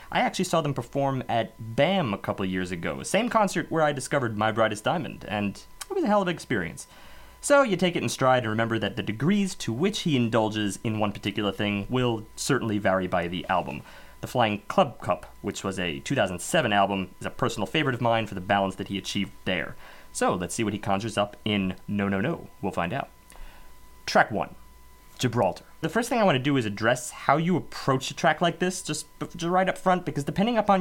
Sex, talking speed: male, 225 wpm